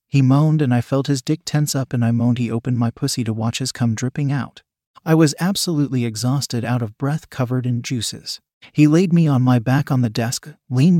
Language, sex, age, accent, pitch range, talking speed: English, male, 40-59, American, 125-150 Hz, 230 wpm